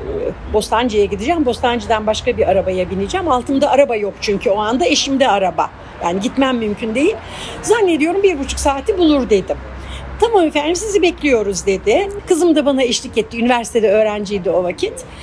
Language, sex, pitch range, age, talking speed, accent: Turkish, female, 210-340 Hz, 60-79, 155 wpm, native